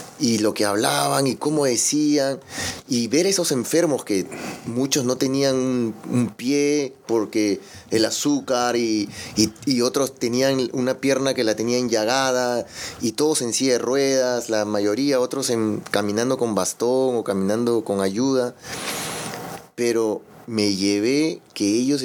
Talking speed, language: 140 wpm, Spanish